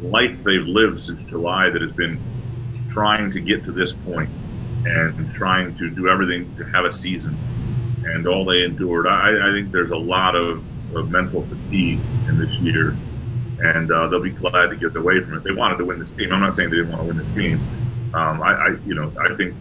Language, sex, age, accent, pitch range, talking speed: English, male, 40-59, American, 90-120 Hz, 225 wpm